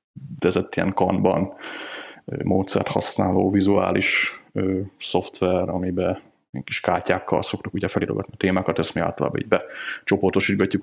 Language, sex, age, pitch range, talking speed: Hungarian, male, 20-39, 95-100 Hz, 110 wpm